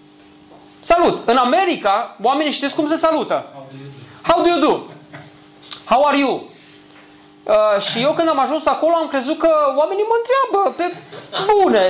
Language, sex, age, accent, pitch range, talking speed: Romanian, male, 20-39, native, 245-355 Hz, 150 wpm